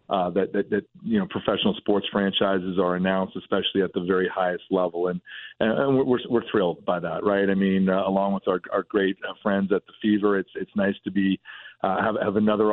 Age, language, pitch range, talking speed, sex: 40-59, English, 95-105 Hz, 220 wpm, male